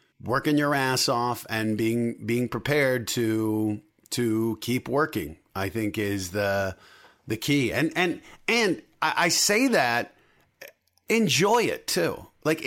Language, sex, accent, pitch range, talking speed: English, male, American, 120-165 Hz, 135 wpm